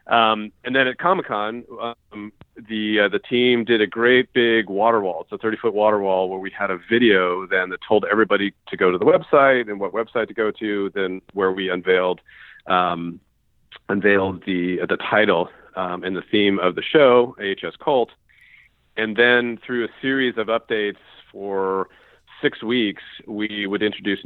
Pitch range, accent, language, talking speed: 95-115 Hz, American, English, 180 wpm